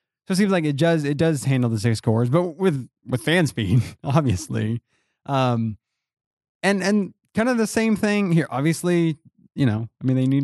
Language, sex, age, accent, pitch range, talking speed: English, male, 20-39, American, 120-170 Hz, 190 wpm